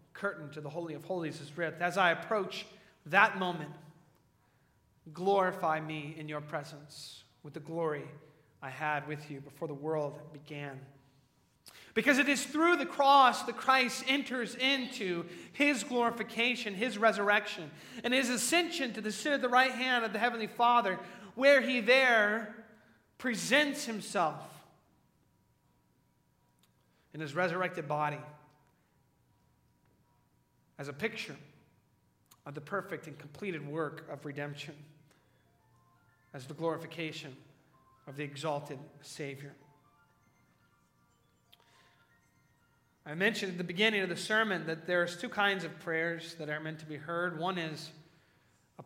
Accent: American